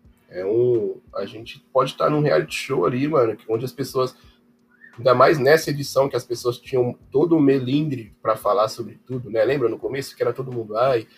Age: 20-39